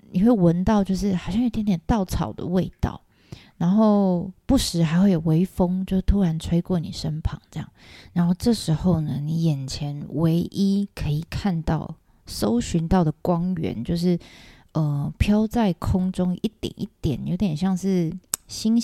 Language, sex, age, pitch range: Chinese, female, 20-39, 165-200 Hz